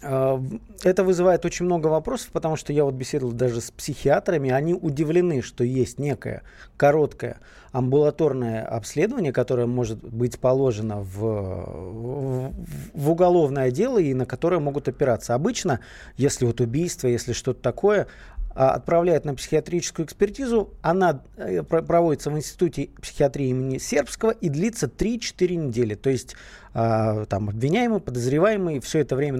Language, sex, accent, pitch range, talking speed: Russian, male, native, 125-170 Hz, 135 wpm